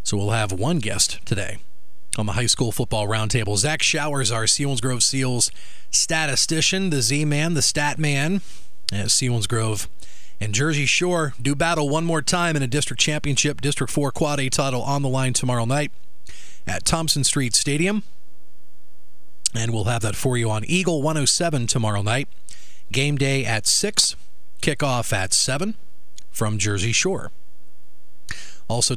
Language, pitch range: English, 100-150 Hz